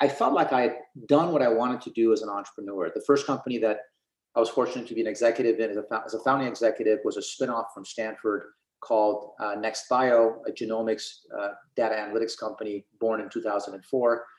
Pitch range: 105-125 Hz